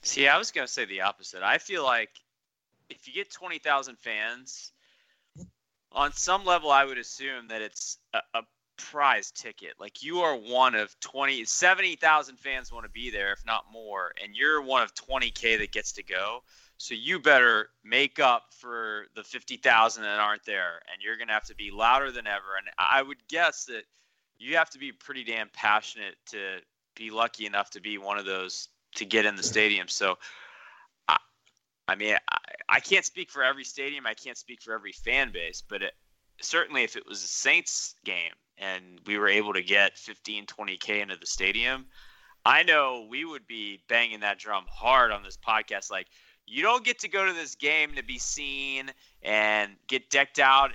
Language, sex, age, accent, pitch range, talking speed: English, male, 20-39, American, 105-140 Hz, 195 wpm